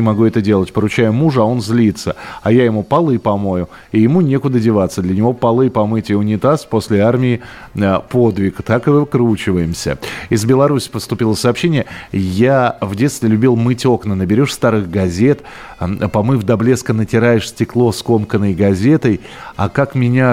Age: 30-49